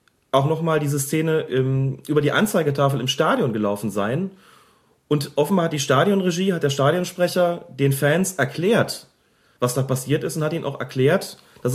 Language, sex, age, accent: German, male, 30-49, German